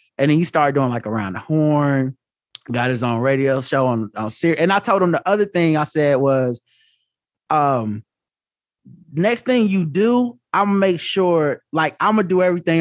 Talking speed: 200 wpm